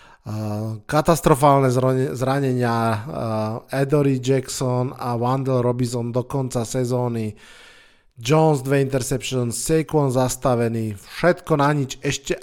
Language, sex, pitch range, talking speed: Slovak, male, 125-150 Hz, 90 wpm